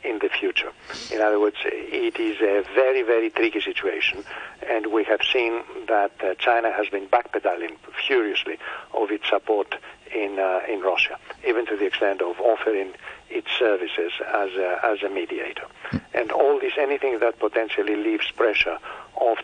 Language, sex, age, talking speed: English, male, 60-79, 165 wpm